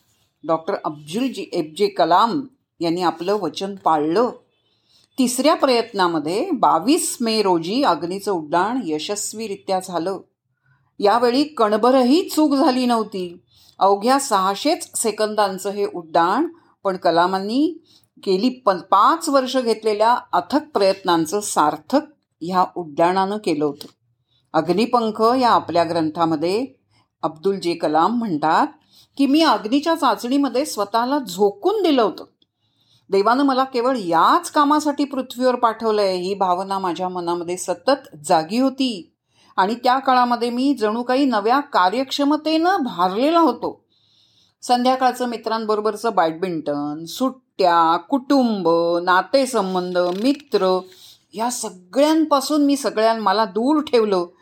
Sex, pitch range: female, 175-260 Hz